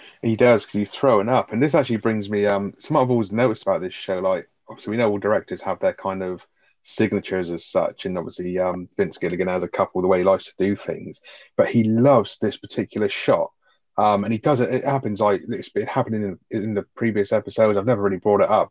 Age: 30-49